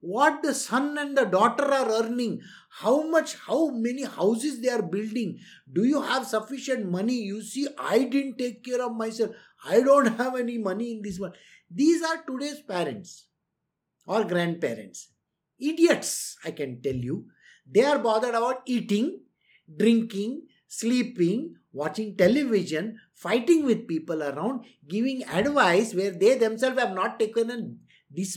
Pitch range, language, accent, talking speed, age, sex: 205-275 Hz, English, Indian, 150 wpm, 50-69, male